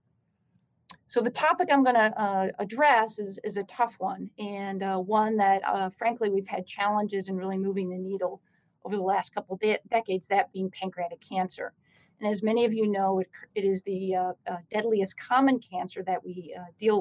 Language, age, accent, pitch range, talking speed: English, 40-59, American, 185-215 Hz, 190 wpm